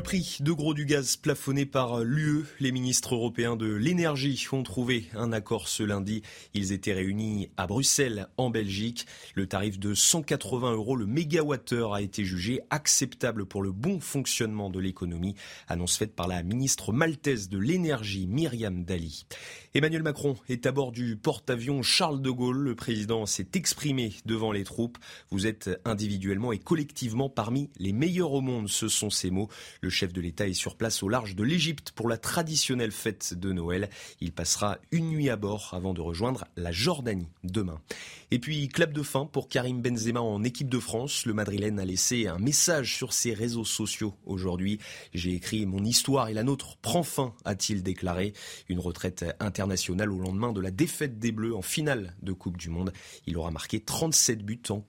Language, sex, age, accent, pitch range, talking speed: French, male, 30-49, French, 100-135 Hz, 190 wpm